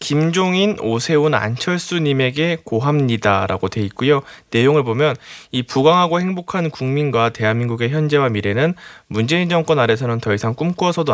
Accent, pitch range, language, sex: native, 115-160 Hz, Korean, male